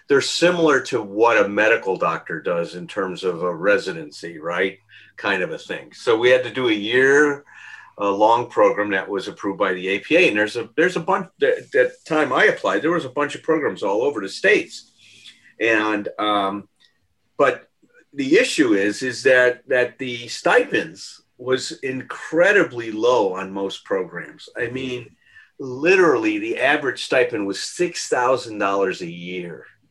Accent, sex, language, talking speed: American, male, English, 165 wpm